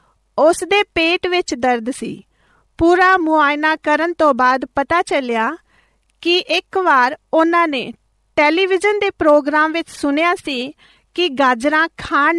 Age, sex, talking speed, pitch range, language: 40-59, female, 130 wpm, 270-345 Hz, Punjabi